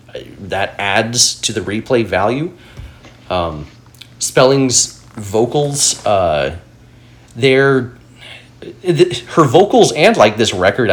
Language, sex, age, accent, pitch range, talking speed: English, male, 30-49, American, 95-125 Hz, 95 wpm